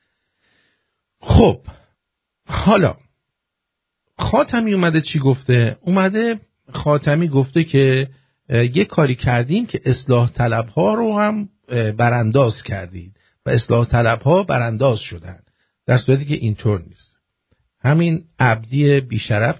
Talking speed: 105 wpm